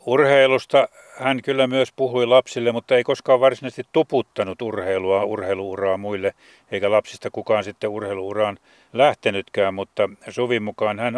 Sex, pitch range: male, 105-125 Hz